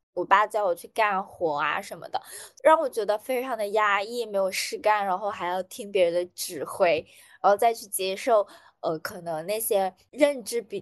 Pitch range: 185-280 Hz